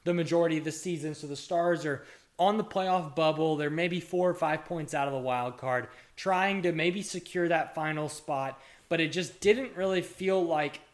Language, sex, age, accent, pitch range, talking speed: English, male, 20-39, American, 135-180 Hz, 205 wpm